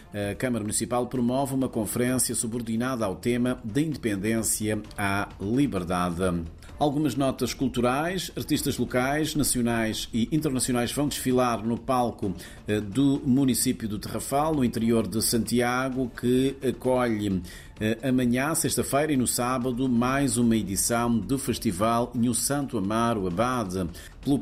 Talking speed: 125 wpm